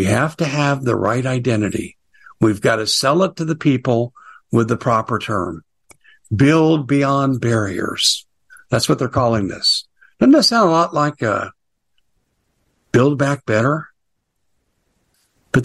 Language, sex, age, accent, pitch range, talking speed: English, male, 60-79, American, 110-160 Hz, 145 wpm